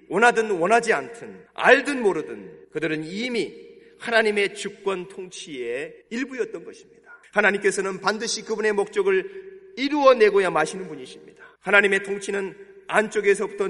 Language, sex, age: Korean, male, 30-49